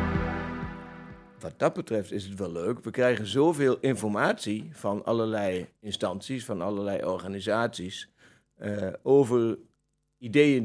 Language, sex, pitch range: Dutch, male, 110-145 Hz